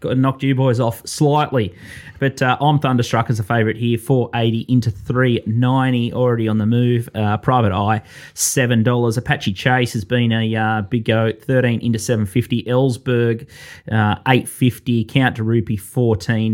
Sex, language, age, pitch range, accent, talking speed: male, English, 20-39, 110-130 Hz, Australian, 150 wpm